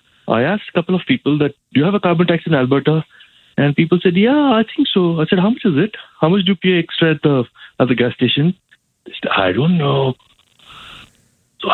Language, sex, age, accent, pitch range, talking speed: English, male, 60-79, Indian, 115-170 Hz, 230 wpm